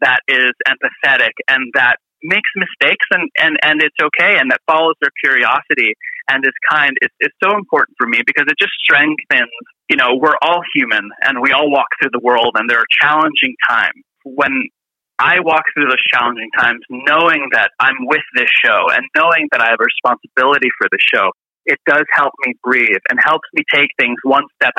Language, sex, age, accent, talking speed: English, male, 30-49, American, 200 wpm